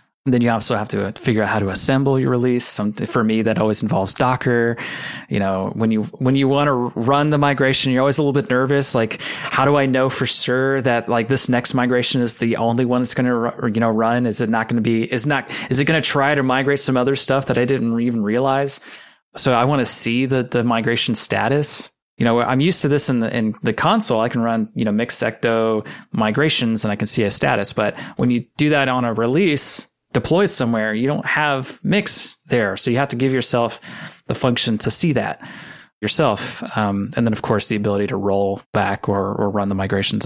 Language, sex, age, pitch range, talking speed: English, male, 30-49, 110-135 Hz, 230 wpm